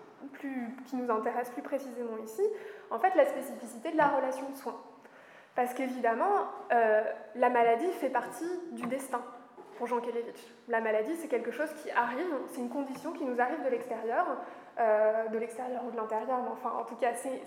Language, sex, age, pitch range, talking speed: French, female, 20-39, 240-290 Hz, 190 wpm